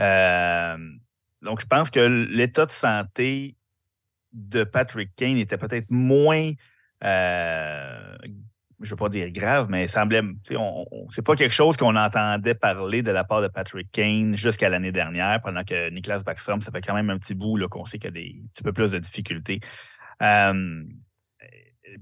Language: French